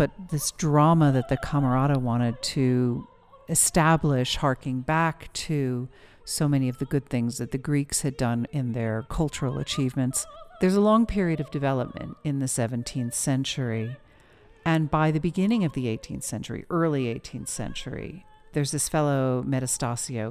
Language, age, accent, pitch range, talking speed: English, 50-69, American, 125-165 Hz, 155 wpm